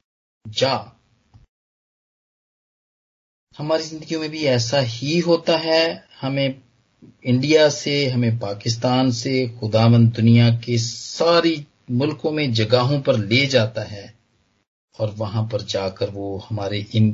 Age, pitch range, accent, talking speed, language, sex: 40-59, 115-155 Hz, native, 110 wpm, Hindi, male